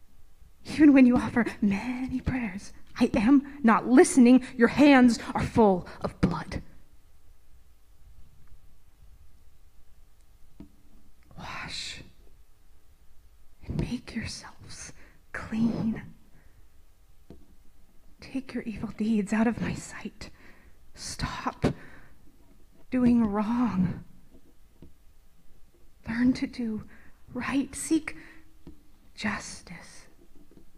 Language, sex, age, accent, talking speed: English, female, 30-49, American, 75 wpm